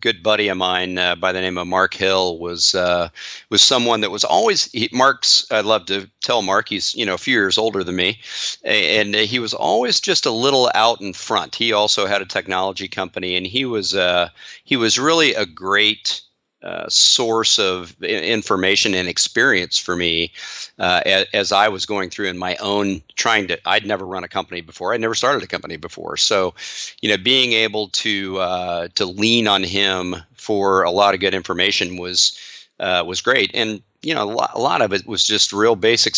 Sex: male